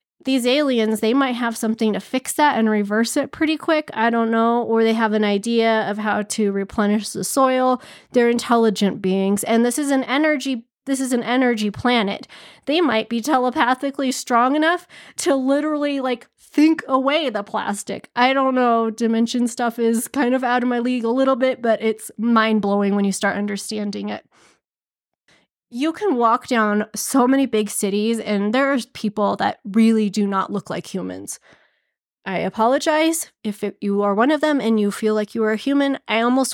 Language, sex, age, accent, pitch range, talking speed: English, female, 20-39, American, 215-270 Hz, 185 wpm